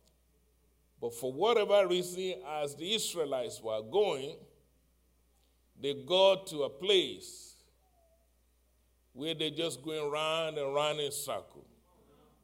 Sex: male